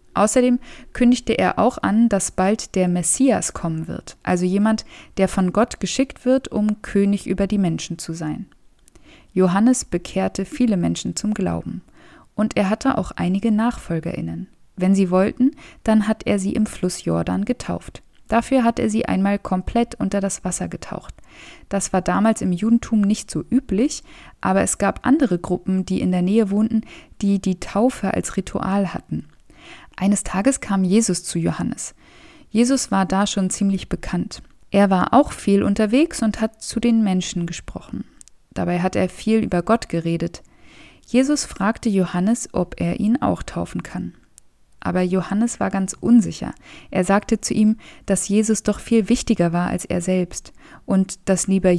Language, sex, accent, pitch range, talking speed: German, female, German, 185-225 Hz, 165 wpm